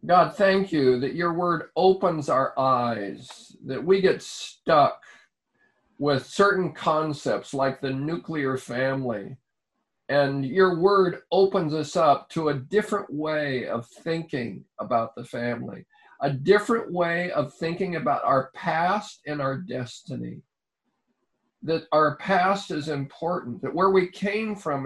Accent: American